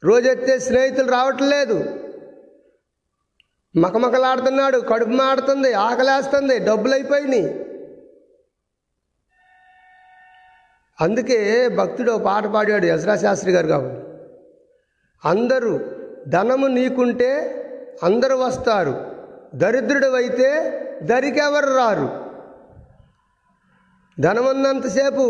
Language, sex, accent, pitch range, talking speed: Telugu, male, native, 220-275 Hz, 65 wpm